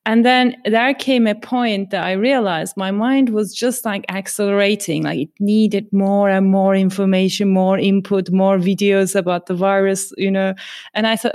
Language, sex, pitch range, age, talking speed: English, female, 195-235 Hz, 30-49, 180 wpm